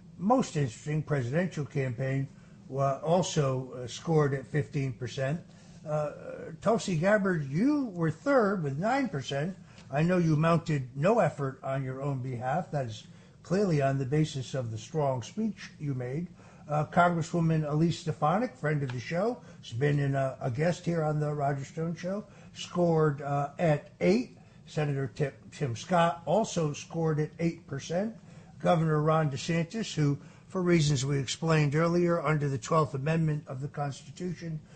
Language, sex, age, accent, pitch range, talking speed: English, male, 60-79, American, 135-170 Hz, 150 wpm